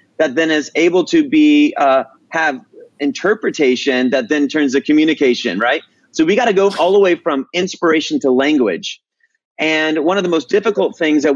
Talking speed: 185 wpm